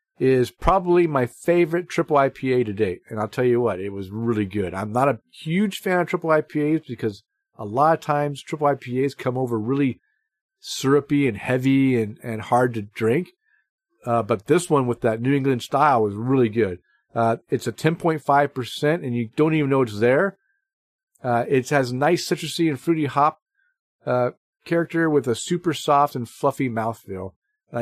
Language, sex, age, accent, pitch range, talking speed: English, male, 50-69, American, 115-155 Hz, 180 wpm